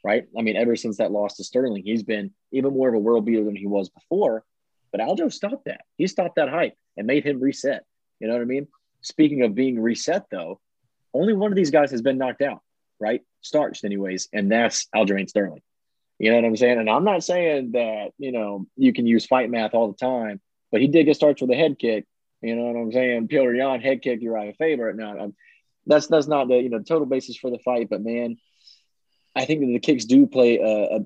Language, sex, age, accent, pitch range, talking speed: English, male, 30-49, American, 105-125 Hz, 235 wpm